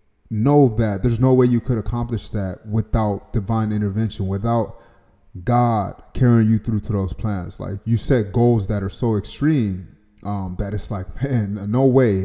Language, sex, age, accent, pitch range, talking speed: English, male, 20-39, American, 100-120 Hz, 170 wpm